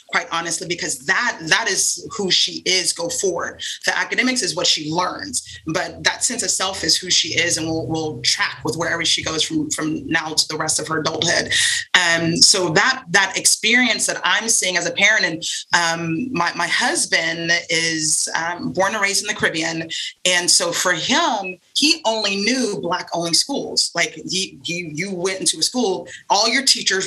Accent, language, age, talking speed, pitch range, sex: American, English, 30-49, 195 wpm, 175-255 Hz, female